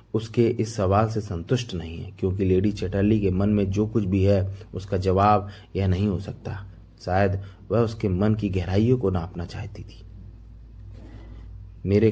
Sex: male